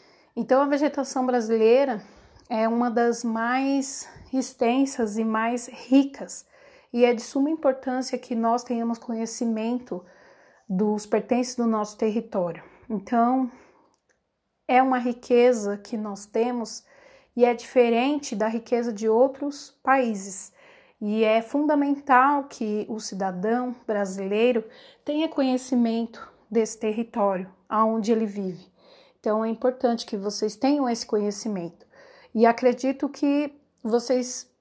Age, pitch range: 30-49, 220-260 Hz